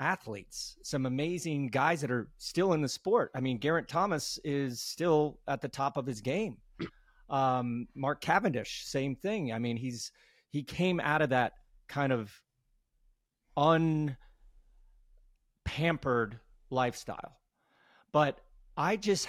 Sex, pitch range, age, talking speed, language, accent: male, 120-155 Hz, 40-59, 135 wpm, English, American